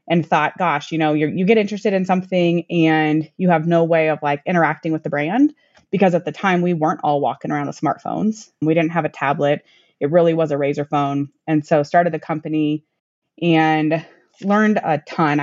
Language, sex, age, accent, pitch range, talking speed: English, female, 20-39, American, 155-180 Hz, 205 wpm